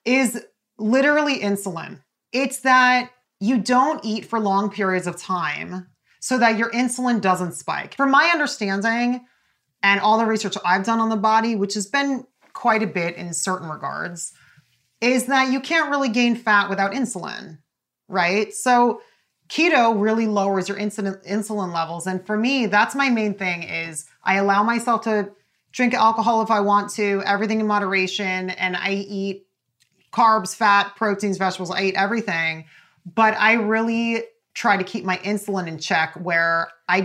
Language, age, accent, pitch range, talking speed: English, 30-49, American, 180-230 Hz, 165 wpm